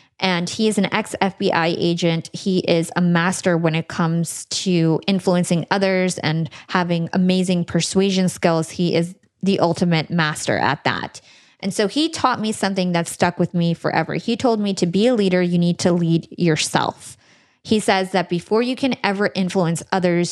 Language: English